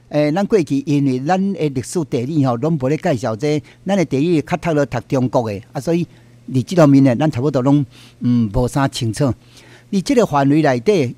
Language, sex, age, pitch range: Chinese, male, 50-69, 120-170 Hz